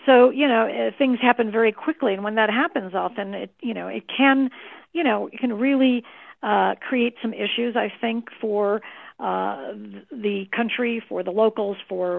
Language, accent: English, American